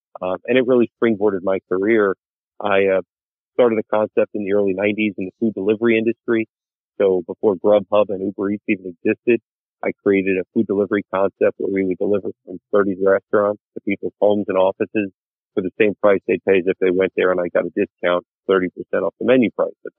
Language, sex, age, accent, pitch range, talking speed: English, male, 40-59, American, 90-105 Hz, 205 wpm